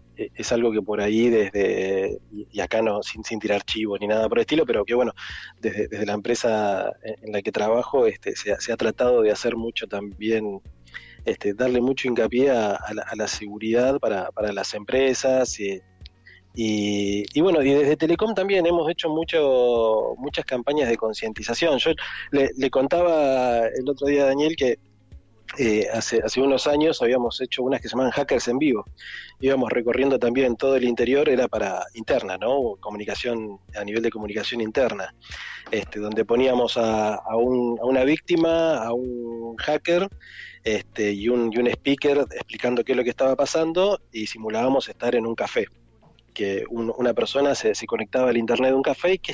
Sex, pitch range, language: male, 110-135 Hz, Spanish